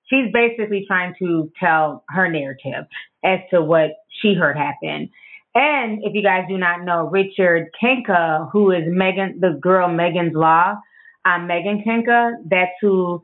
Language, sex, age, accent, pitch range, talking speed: English, female, 20-39, American, 165-205 Hz, 155 wpm